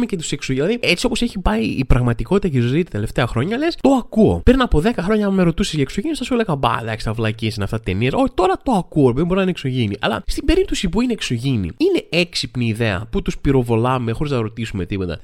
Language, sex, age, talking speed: Greek, male, 20-39, 230 wpm